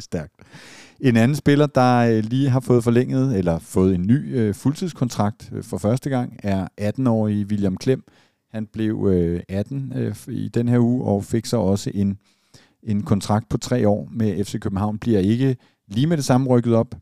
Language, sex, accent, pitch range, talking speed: Danish, male, native, 100-120 Hz, 170 wpm